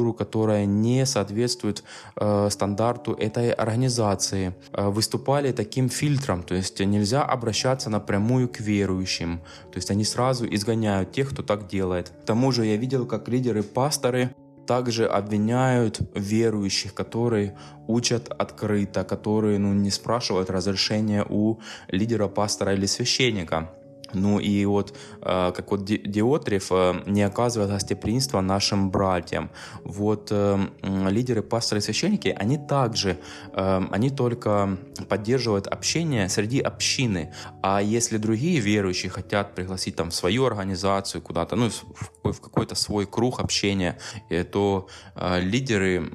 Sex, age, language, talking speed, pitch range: male, 20-39, Russian, 115 wpm, 95-115 Hz